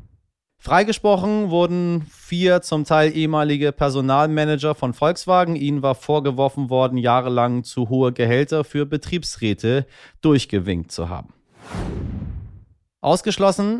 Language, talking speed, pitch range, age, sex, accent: German, 100 wpm, 120-155 Hz, 30-49, male, German